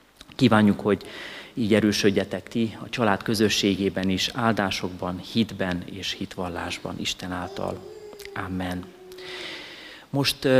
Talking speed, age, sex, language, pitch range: 95 wpm, 30-49, male, Hungarian, 105-120 Hz